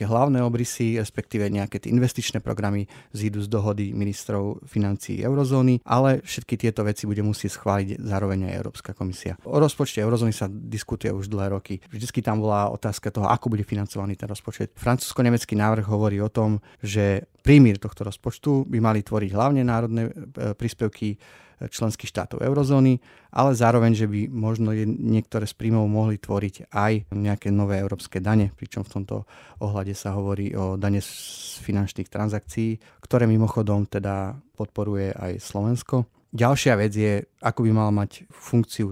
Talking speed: 155 wpm